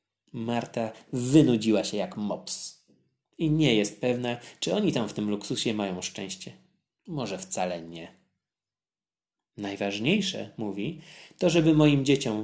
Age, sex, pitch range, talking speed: 20-39, male, 110-160 Hz, 125 wpm